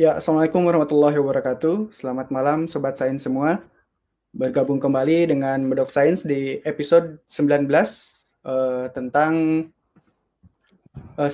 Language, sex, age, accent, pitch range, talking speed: Indonesian, male, 20-39, native, 130-160 Hz, 105 wpm